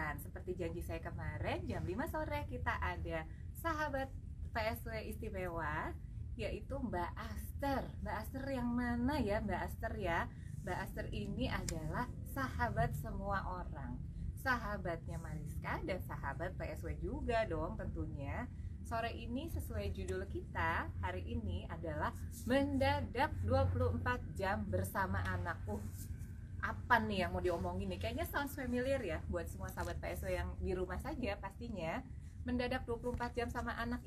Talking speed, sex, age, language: 130 wpm, female, 20-39, Indonesian